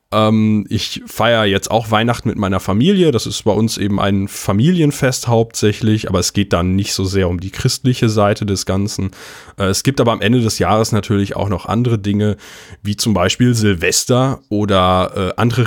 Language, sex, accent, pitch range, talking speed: German, male, German, 95-120 Hz, 180 wpm